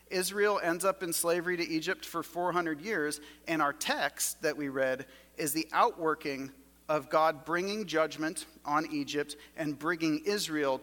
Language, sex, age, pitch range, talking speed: English, male, 40-59, 135-180 Hz, 155 wpm